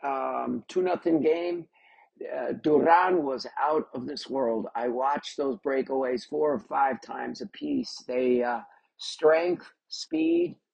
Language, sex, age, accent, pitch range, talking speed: English, male, 50-69, American, 125-165 Hz, 140 wpm